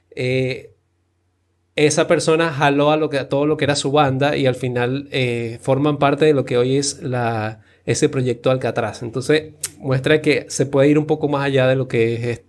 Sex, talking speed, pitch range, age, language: male, 205 wpm, 125-150 Hz, 30-49, Spanish